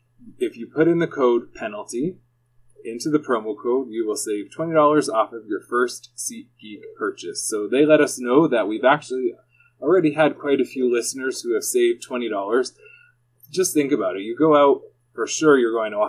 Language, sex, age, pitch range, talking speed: English, male, 20-39, 115-185 Hz, 195 wpm